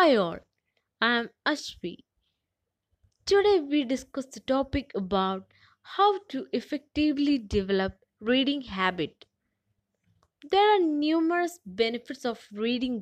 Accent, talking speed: Indian, 105 wpm